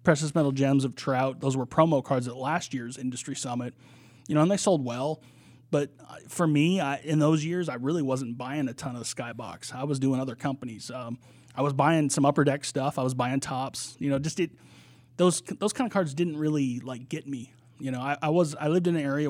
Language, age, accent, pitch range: English, 30-49, American, 130-155 Hz